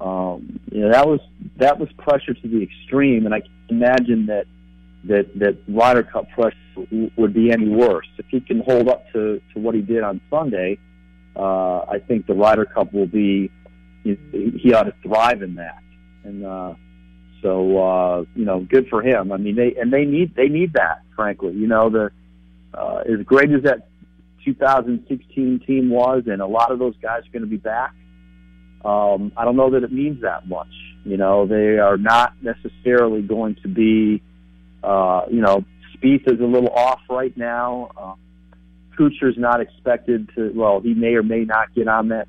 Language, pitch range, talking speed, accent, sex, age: English, 90-120 Hz, 190 wpm, American, male, 50-69